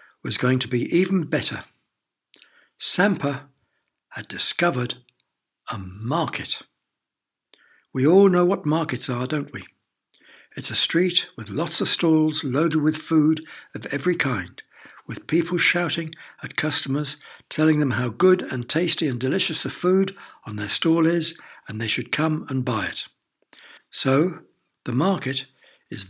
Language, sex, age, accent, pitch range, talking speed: English, male, 60-79, British, 125-165 Hz, 145 wpm